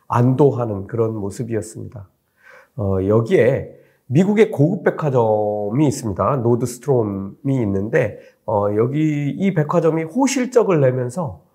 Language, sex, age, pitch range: Korean, male, 40-59, 110-160 Hz